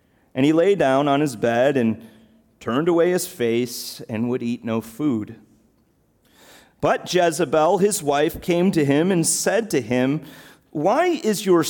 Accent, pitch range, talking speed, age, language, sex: American, 135-210 Hz, 160 wpm, 40-59, English, male